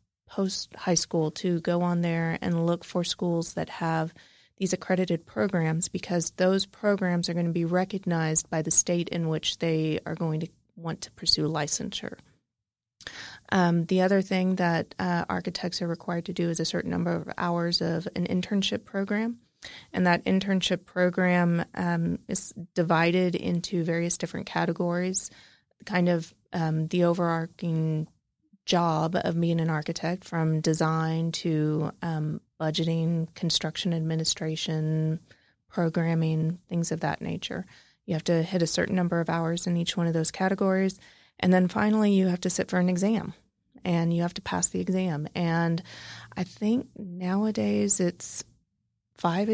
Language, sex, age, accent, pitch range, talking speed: English, female, 20-39, American, 165-185 Hz, 155 wpm